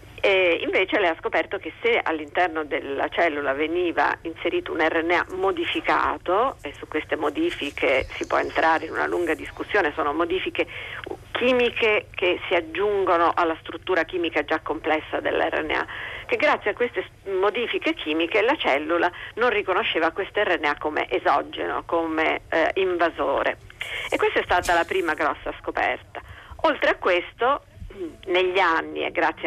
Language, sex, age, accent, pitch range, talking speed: Italian, female, 50-69, native, 160-245 Hz, 145 wpm